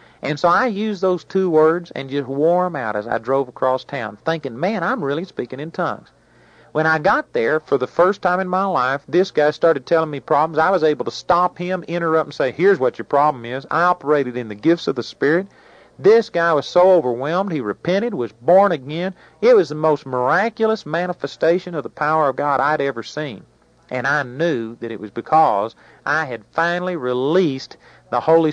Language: English